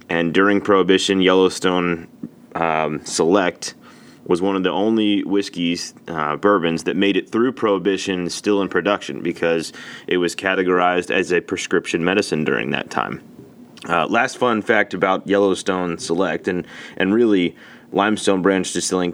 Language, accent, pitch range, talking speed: English, American, 85-100 Hz, 145 wpm